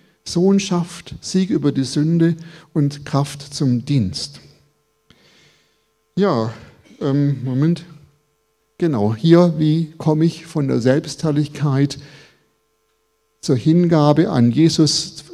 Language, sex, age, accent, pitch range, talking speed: German, male, 50-69, German, 140-170 Hz, 95 wpm